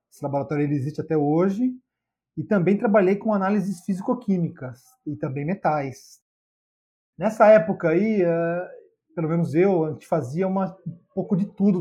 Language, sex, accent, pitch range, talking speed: Portuguese, male, Brazilian, 150-190 Hz, 160 wpm